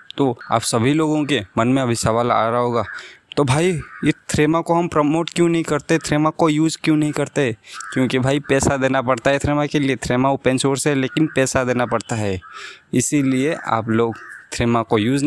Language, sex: Hindi, male